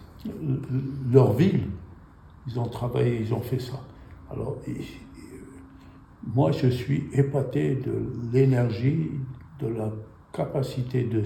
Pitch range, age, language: 110-135 Hz, 60-79, French